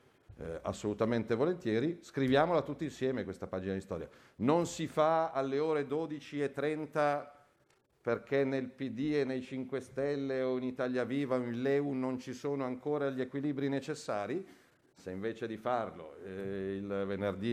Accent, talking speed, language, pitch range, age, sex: native, 150 wpm, Italian, 110-140 Hz, 40-59, male